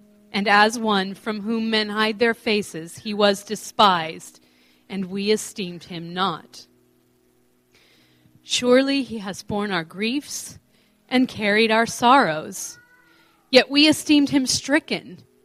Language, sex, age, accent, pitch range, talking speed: English, female, 40-59, American, 195-255 Hz, 125 wpm